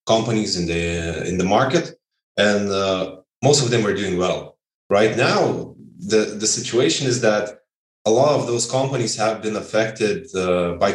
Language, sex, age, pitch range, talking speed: English, male, 20-39, 95-115 Hz, 170 wpm